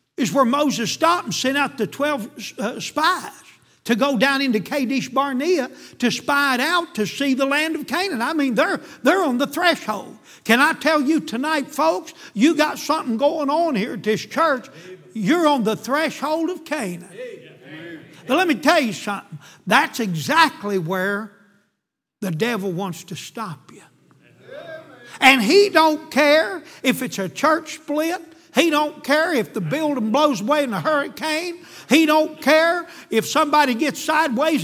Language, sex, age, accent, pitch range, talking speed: English, male, 60-79, American, 225-310 Hz, 170 wpm